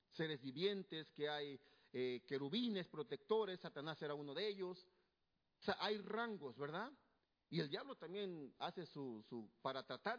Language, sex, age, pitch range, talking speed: Spanish, male, 50-69, 145-205 Hz, 155 wpm